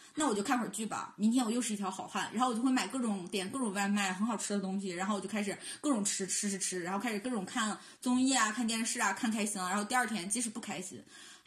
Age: 20-39